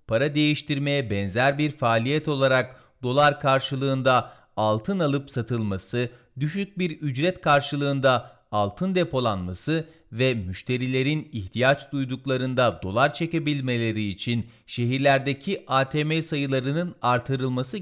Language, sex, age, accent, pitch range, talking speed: Turkish, male, 40-59, native, 120-160 Hz, 95 wpm